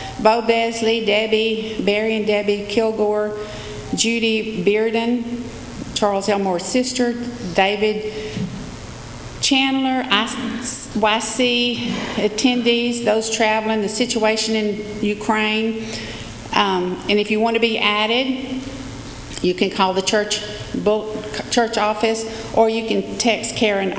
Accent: American